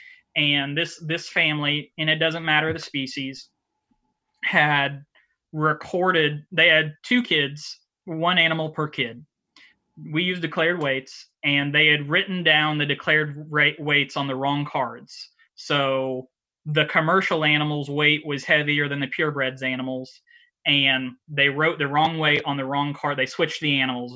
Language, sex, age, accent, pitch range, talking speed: English, male, 20-39, American, 140-160 Hz, 155 wpm